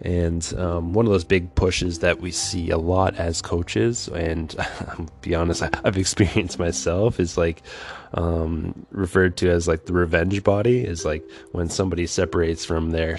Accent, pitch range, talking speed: American, 85-95 Hz, 175 wpm